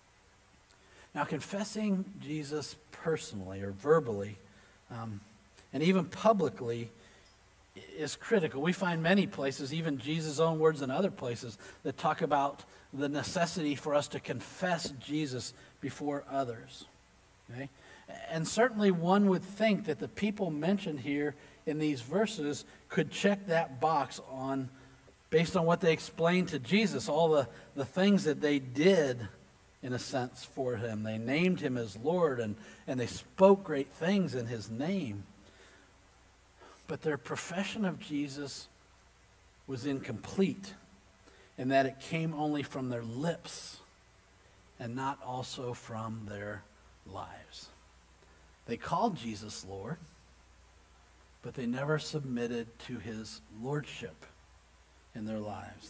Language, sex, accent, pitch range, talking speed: English, male, American, 95-155 Hz, 130 wpm